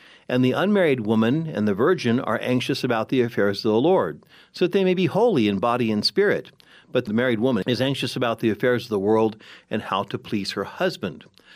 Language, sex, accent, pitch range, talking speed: English, male, American, 105-130 Hz, 225 wpm